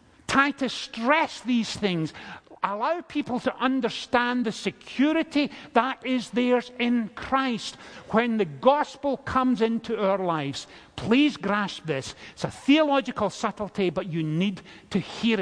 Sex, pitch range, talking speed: male, 185-260 Hz, 135 wpm